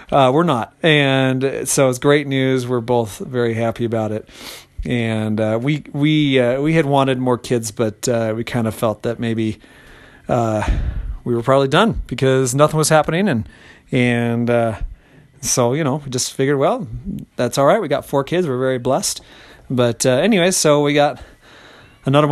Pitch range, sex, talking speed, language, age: 120-145 Hz, male, 195 wpm, English, 40-59